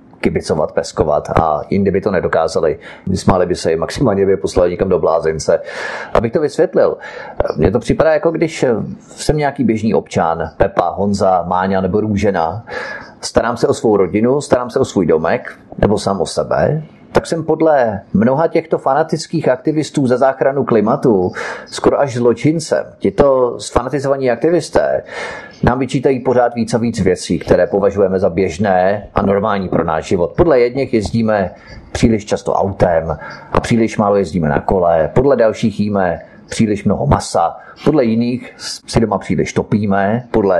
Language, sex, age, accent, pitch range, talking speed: Czech, male, 30-49, native, 100-135 Hz, 155 wpm